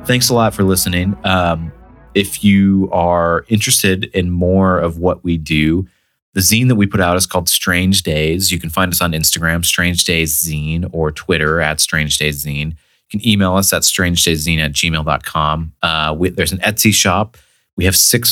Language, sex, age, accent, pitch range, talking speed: English, male, 30-49, American, 80-100 Hz, 195 wpm